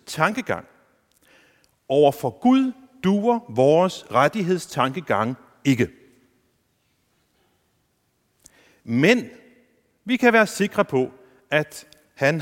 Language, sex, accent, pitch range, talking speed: Danish, male, native, 140-210 Hz, 70 wpm